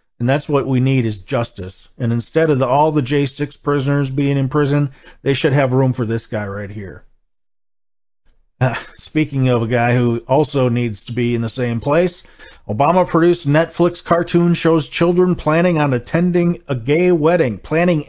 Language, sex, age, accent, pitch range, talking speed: English, male, 40-59, American, 120-155 Hz, 175 wpm